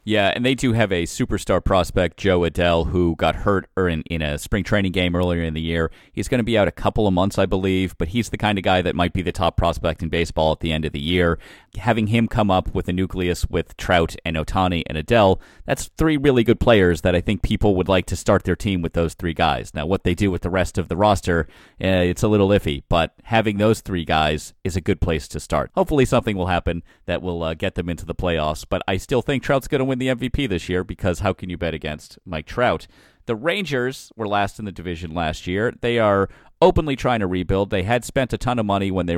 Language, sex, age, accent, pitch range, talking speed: English, male, 30-49, American, 85-110 Hz, 260 wpm